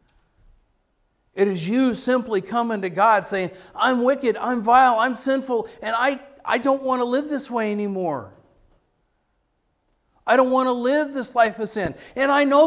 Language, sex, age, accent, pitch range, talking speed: English, male, 50-69, American, 155-245 Hz, 170 wpm